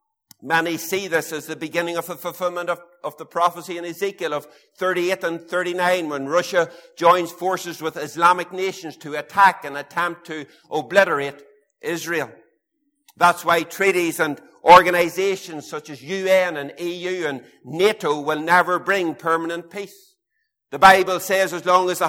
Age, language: 60-79, English